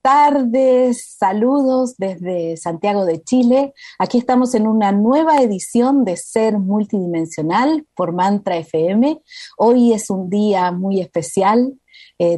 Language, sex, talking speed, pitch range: Spanish, female, 120 wpm, 175-245 Hz